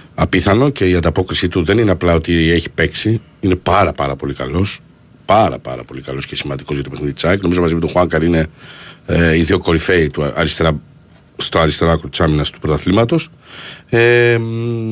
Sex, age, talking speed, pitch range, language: male, 50-69, 170 wpm, 95-140 Hz, Greek